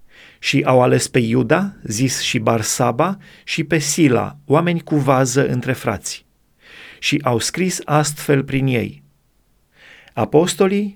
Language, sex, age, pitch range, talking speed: Romanian, male, 30-49, 130-165 Hz, 125 wpm